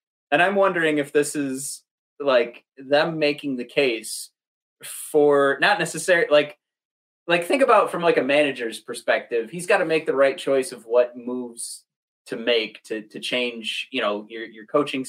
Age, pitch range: 30-49, 120-155 Hz